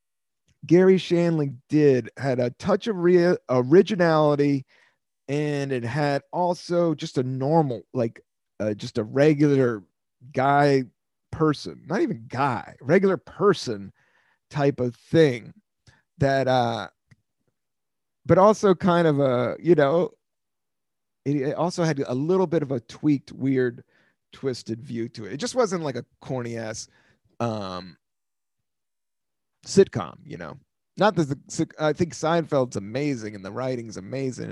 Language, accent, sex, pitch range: English, American, male, 125-170 Hz